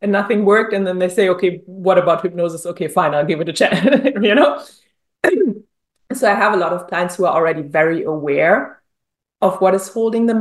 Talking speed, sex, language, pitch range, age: 215 wpm, female, English, 195-255 Hz, 30-49